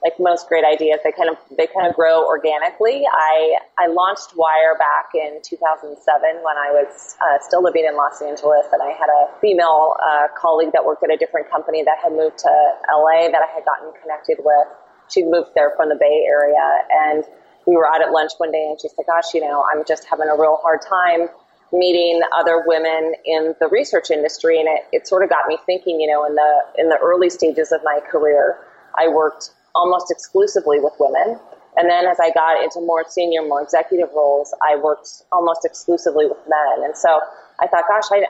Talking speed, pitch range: 215 wpm, 155-180 Hz